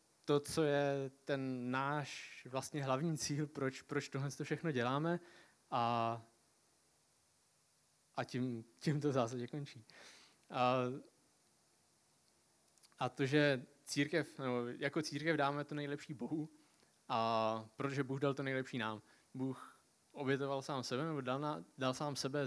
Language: Czech